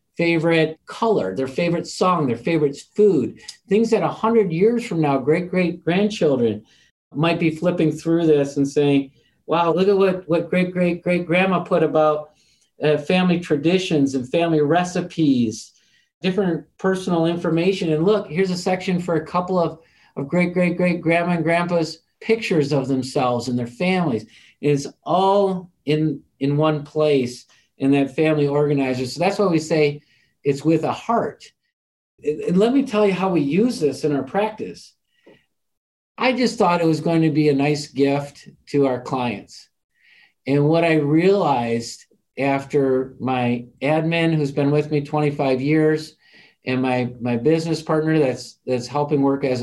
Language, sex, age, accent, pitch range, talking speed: English, male, 50-69, American, 140-180 Hz, 155 wpm